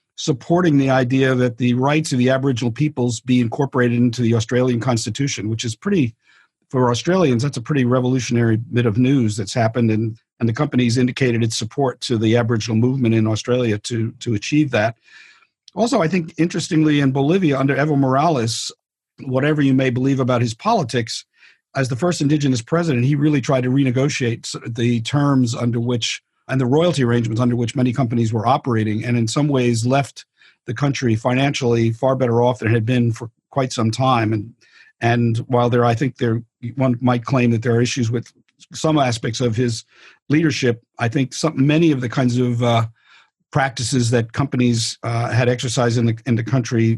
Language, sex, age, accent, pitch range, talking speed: English, male, 50-69, American, 120-140 Hz, 185 wpm